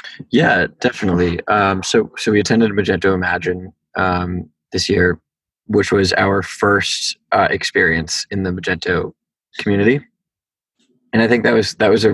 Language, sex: English, male